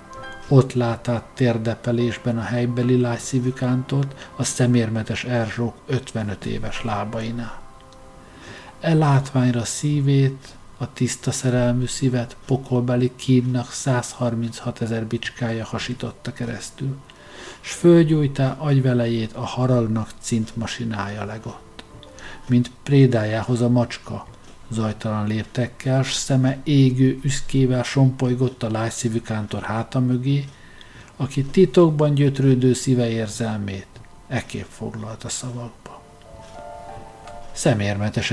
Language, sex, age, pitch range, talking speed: Hungarian, male, 50-69, 110-130 Hz, 90 wpm